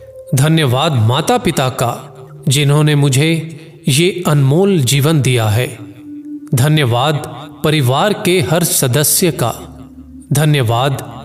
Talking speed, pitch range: 95 wpm, 130-175 Hz